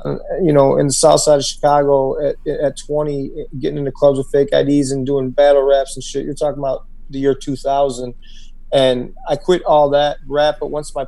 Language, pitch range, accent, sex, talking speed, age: English, 135-155 Hz, American, male, 205 wpm, 30-49